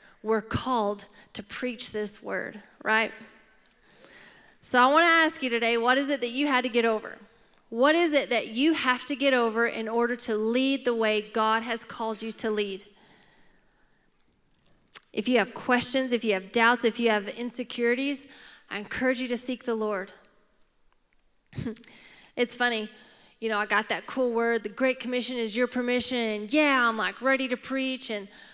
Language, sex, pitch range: English, female, 220-260 Hz